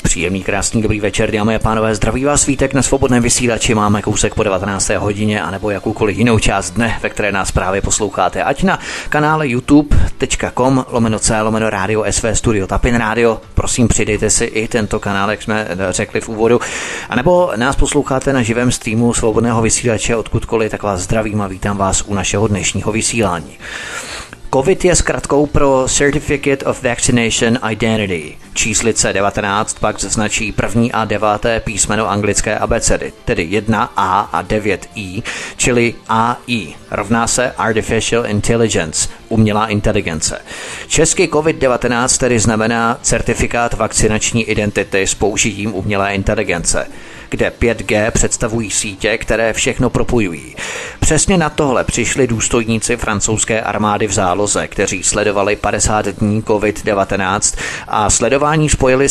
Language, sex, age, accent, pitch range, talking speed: Czech, male, 30-49, native, 105-120 Hz, 140 wpm